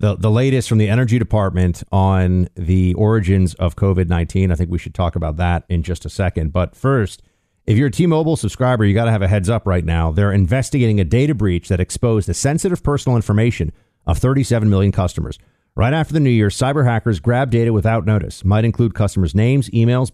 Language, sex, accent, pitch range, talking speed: English, male, American, 95-125 Hz, 210 wpm